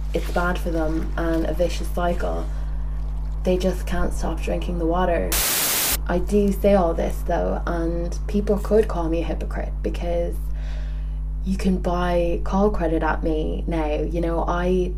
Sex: female